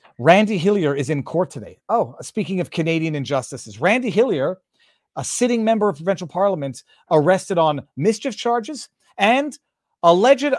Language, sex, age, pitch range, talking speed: English, male, 40-59, 130-195 Hz, 140 wpm